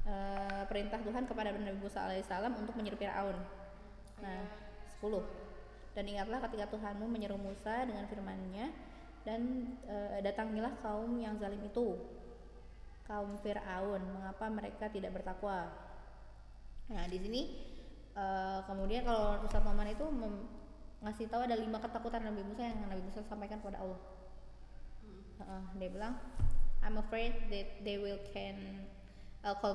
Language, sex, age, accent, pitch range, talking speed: Indonesian, female, 20-39, native, 200-240 Hz, 135 wpm